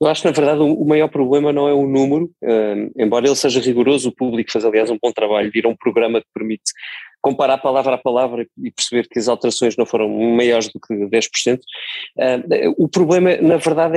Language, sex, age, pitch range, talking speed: Portuguese, male, 20-39, 130-170 Hz, 200 wpm